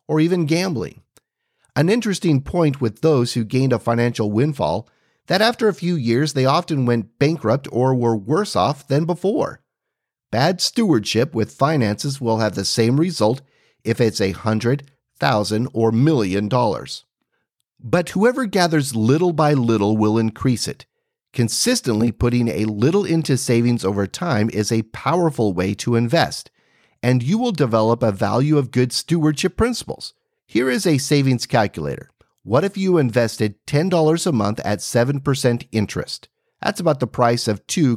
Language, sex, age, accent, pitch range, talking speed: English, male, 40-59, American, 110-155 Hz, 155 wpm